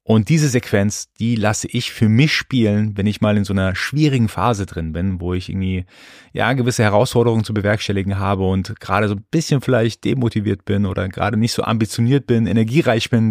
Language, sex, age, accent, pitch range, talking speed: German, male, 30-49, German, 95-120 Hz, 200 wpm